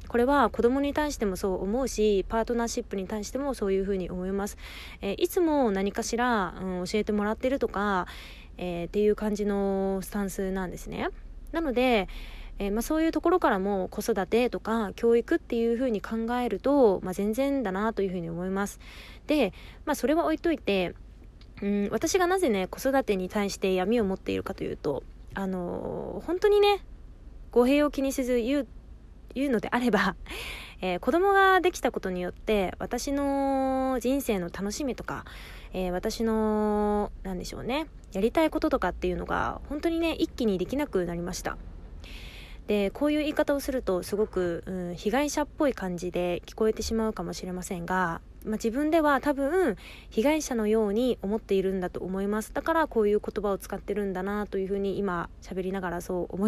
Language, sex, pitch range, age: Japanese, female, 190-265 Hz, 20-39